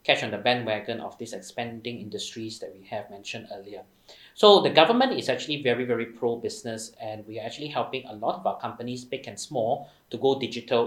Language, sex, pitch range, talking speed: English, male, 110-130 Hz, 205 wpm